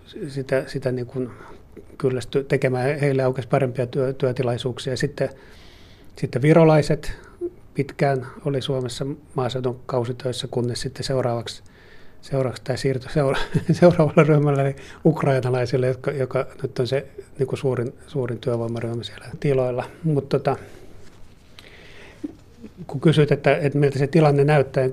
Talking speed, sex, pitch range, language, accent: 115 wpm, male, 125-140 Hz, Finnish, native